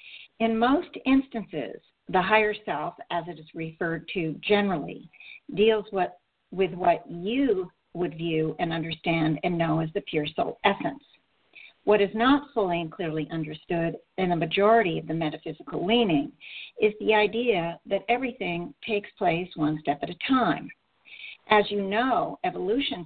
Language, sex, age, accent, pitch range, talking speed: English, female, 50-69, American, 170-240 Hz, 150 wpm